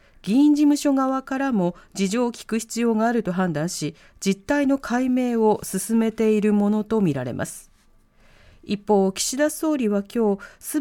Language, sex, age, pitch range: Japanese, female, 40-59, 170-260 Hz